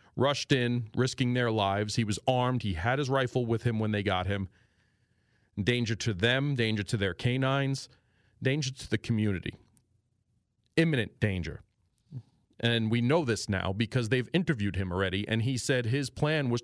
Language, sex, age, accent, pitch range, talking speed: English, male, 40-59, American, 110-135 Hz, 170 wpm